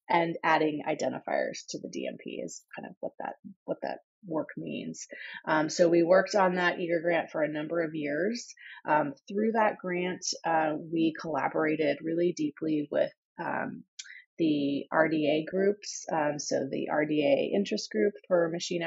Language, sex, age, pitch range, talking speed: English, female, 30-49, 155-180 Hz, 160 wpm